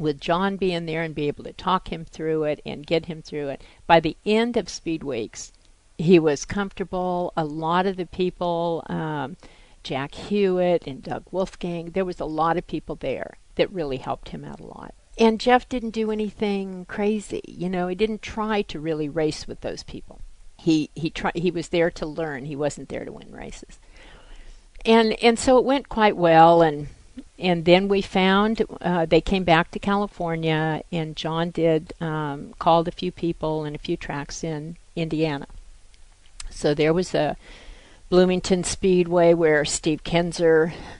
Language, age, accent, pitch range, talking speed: English, 50-69, American, 155-185 Hz, 180 wpm